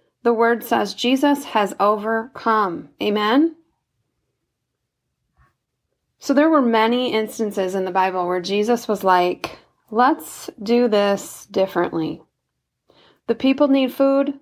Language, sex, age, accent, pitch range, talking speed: English, female, 30-49, American, 200-250 Hz, 110 wpm